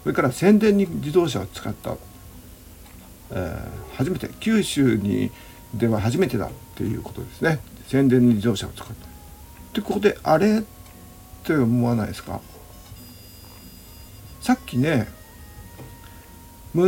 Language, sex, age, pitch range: Japanese, male, 50-69, 90-120 Hz